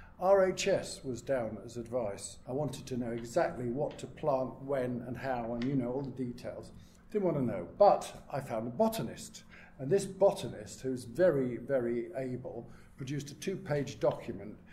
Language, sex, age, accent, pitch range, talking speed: English, male, 50-69, British, 125-180 Hz, 170 wpm